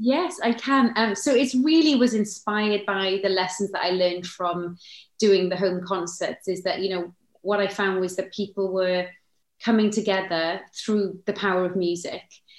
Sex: female